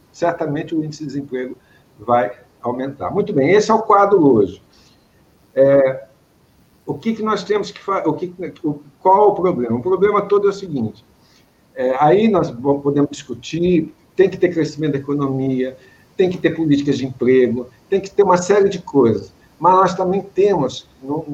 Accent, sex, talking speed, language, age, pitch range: Brazilian, male, 175 wpm, English, 60-79, 125-180 Hz